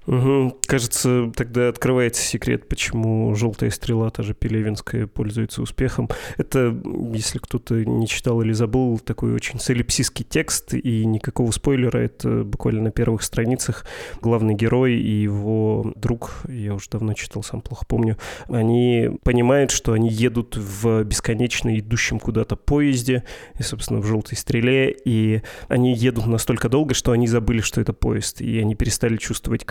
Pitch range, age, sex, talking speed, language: 110-120 Hz, 20-39, male, 150 wpm, Russian